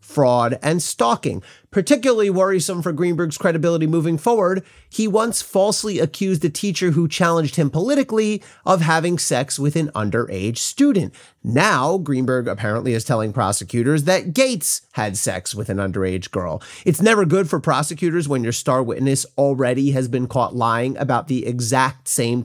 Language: English